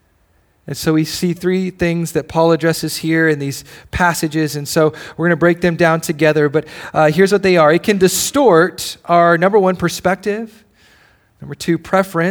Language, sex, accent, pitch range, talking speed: English, male, American, 140-185 Hz, 180 wpm